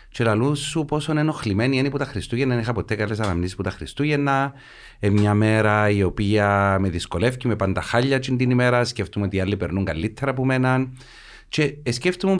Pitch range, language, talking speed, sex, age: 100-130 Hz, Greek, 185 wpm, male, 30-49